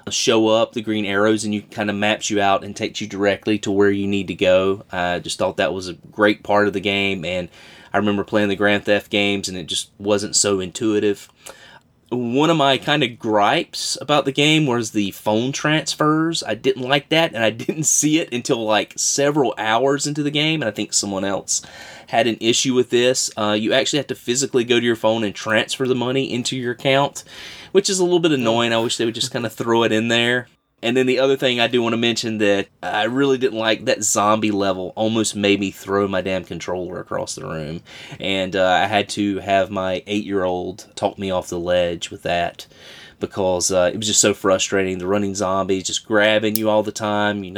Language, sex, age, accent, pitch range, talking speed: English, male, 20-39, American, 100-125 Hz, 225 wpm